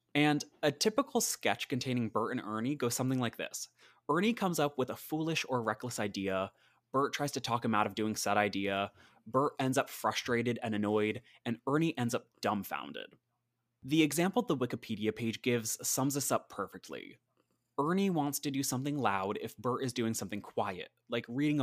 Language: English